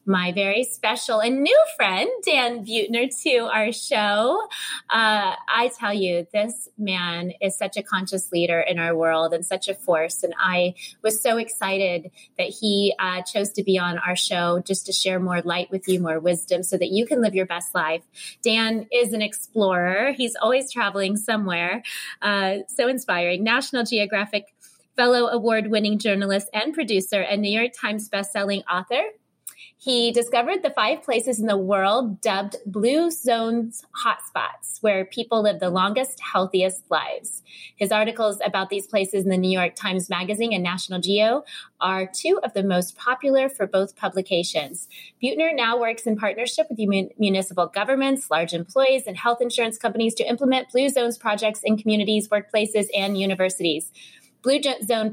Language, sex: English, female